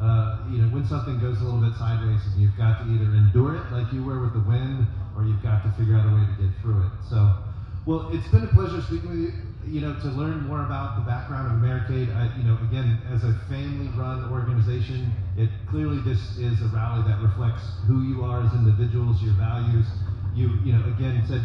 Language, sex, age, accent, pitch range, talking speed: English, male, 30-49, American, 105-120 Hz, 225 wpm